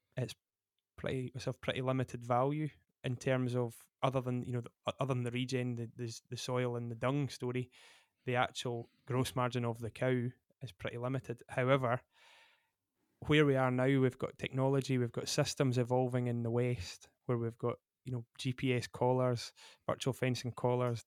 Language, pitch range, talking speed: English, 120-130 Hz, 175 wpm